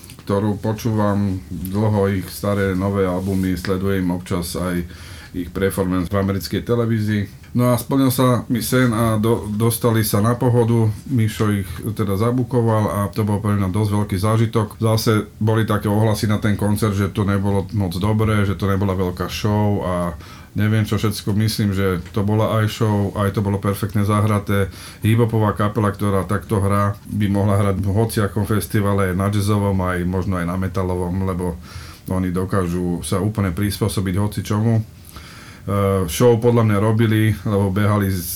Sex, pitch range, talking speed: male, 95-110 Hz, 165 wpm